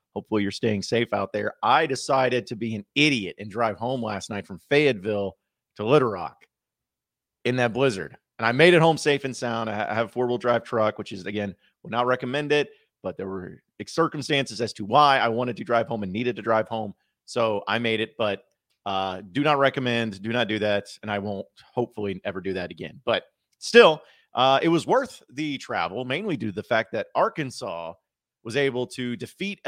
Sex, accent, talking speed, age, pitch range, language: male, American, 210 wpm, 30-49, 105-130 Hz, English